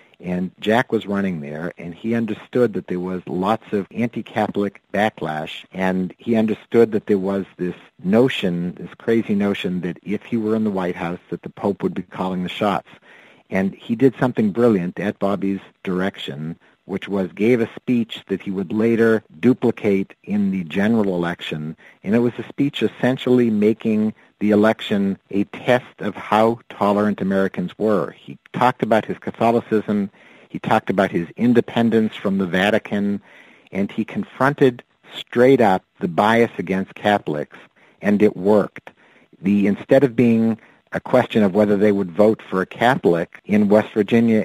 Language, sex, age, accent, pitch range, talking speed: English, male, 50-69, American, 95-115 Hz, 165 wpm